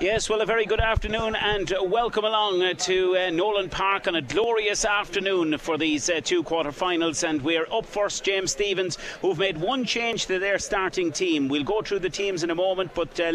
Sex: male